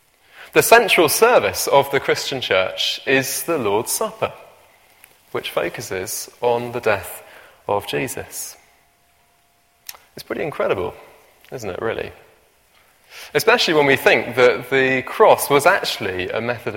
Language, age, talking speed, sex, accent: English, 20-39, 125 wpm, male, British